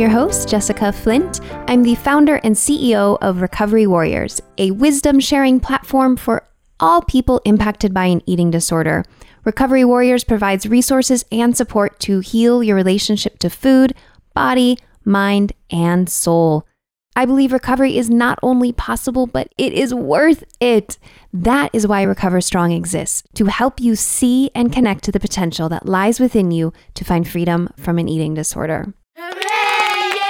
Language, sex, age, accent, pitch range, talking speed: English, female, 20-39, American, 180-250 Hz, 155 wpm